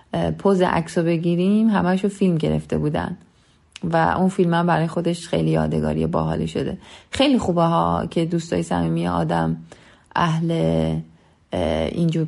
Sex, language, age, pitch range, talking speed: female, Persian, 30-49, 130-180 Hz, 125 wpm